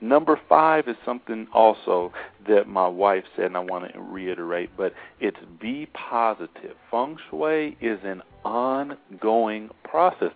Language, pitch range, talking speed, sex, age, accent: English, 95-110 Hz, 140 wpm, male, 40-59, American